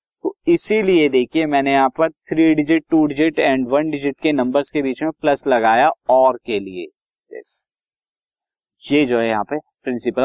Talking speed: 160 wpm